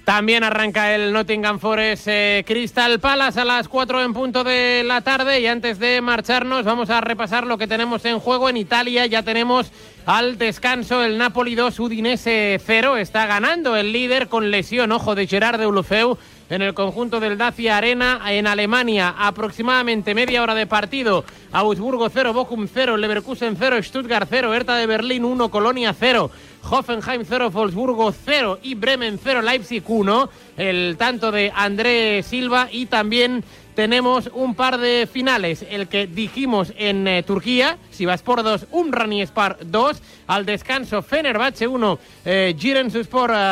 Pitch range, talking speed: 210-245 Hz, 160 wpm